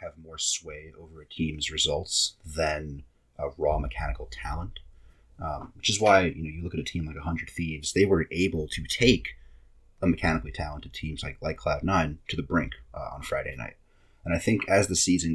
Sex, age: male, 30-49